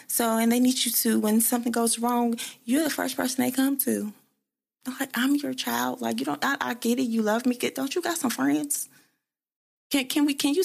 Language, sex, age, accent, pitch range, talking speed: English, female, 20-39, American, 160-260 Hz, 235 wpm